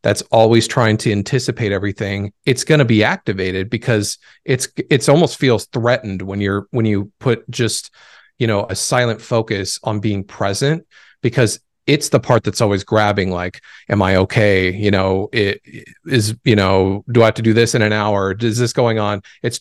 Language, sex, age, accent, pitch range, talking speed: English, male, 40-59, American, 100-120 Hz, 190 wpm